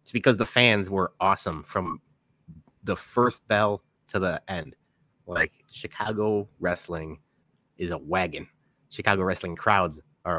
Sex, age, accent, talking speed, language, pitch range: male, 30-49, American, 135 wpm, English, 90-120 Hz